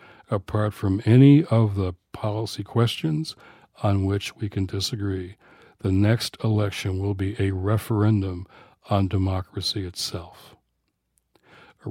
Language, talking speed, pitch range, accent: English, 115 wpm, 95-115 Hz, American